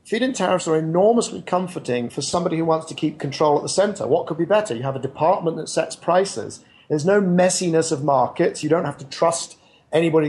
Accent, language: British, English